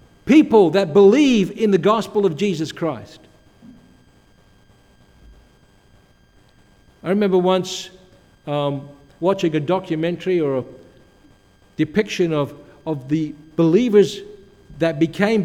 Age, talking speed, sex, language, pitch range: 60-79, 95 wpm, male, English, 145-200 Hz